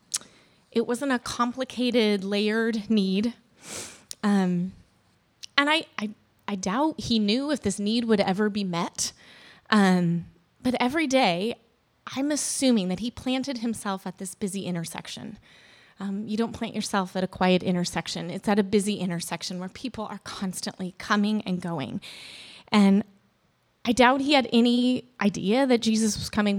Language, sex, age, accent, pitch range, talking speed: English, female, 20-39, American, 195-245 Hz, 150 wpm